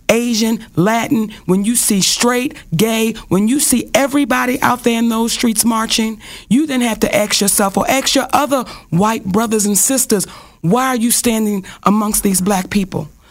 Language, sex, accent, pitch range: English, female, American, 175-235 Hz